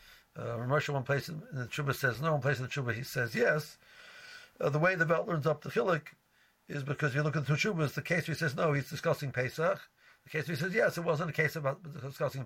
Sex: male